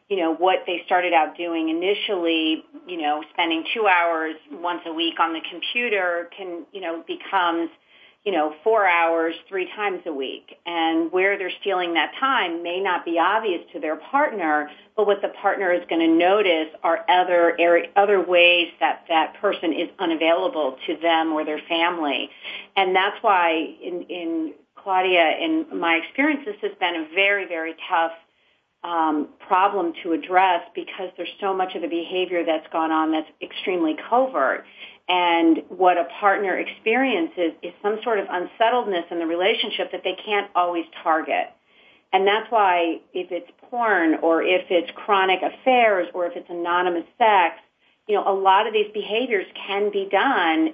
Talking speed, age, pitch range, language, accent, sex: 170 wpm, 40-59, 165-200 Hz, English, American, female